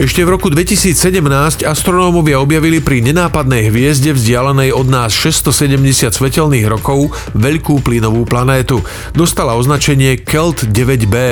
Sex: male